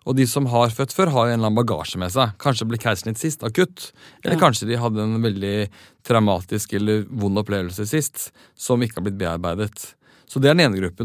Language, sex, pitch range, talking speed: English, male, 105-135 Hz, 205 wpm